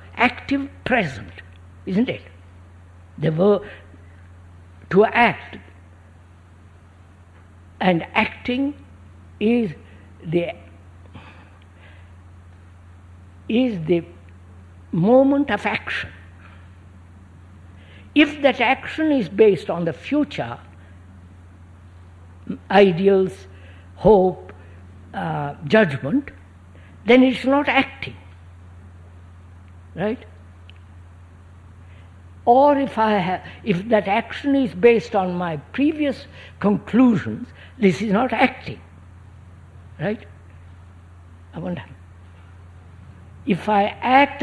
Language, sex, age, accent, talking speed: English, female, 60-79, Indian, 75 wpm